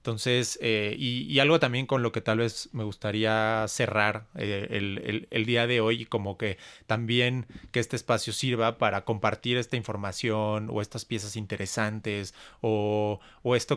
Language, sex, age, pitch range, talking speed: Spanish, male, 30-49, 105-120 Hz, 175 wpm